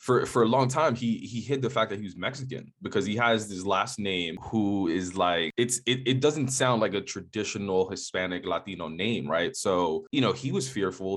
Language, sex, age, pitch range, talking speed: English, male, 20-39, 90-120 Hz, 220 wpm